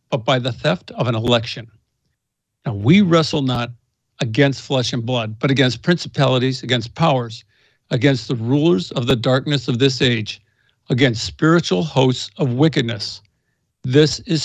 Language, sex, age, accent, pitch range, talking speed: English, male, 60-79, American, 125-165 Hz, 150 wpm